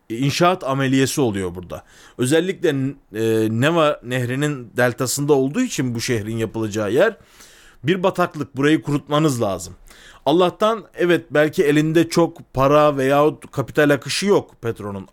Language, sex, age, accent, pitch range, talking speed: Turkish, male, 40-59, native, 135-185 Hz, 120 wpm